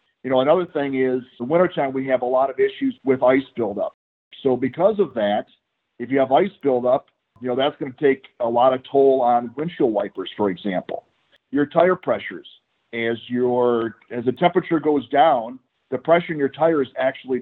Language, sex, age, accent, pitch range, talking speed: English, male, 50-69, American, 120-150 Hz, 195 wpm